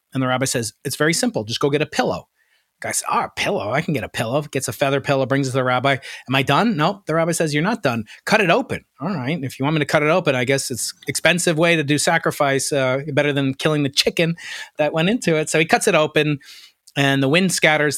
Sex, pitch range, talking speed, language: male, 135-175 Hz, 285 wpm, English